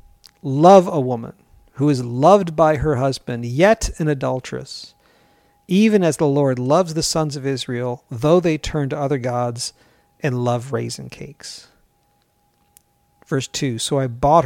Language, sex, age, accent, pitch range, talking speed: English, male, 50-69, American, 130-165 Hz, 150 wpm